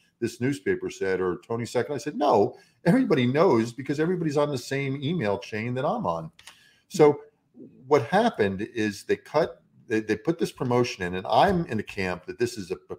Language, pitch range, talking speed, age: English, 95-130 Hz, 200 wpm, 50-69